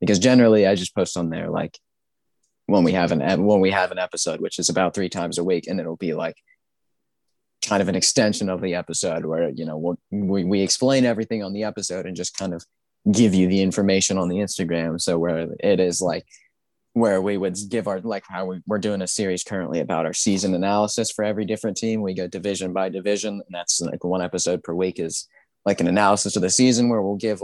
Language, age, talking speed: English, 20-39, 230 wpm